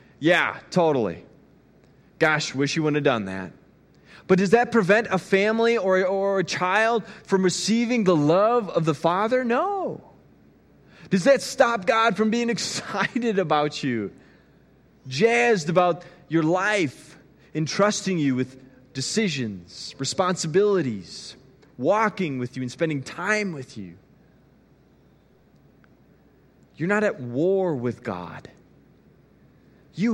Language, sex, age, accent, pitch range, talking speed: English, male, 30-49, American, 155-205 Hz, 120 wpm